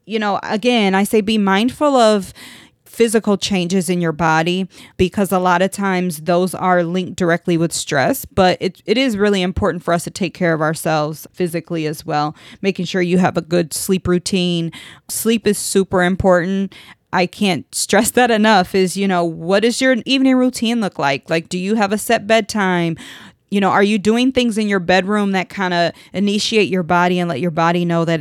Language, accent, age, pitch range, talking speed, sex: English, American, 20-39, 170-205 Hz, 200 wpm, female